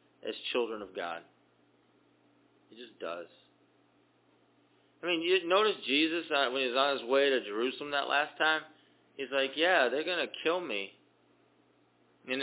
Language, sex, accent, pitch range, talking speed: English, male, American, 125-190 Hz, 155 wpm